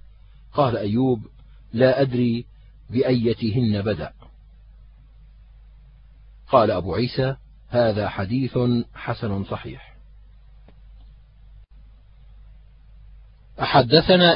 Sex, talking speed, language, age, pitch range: male, 60 wpm, Arabic, 40-59, 115-145 Hz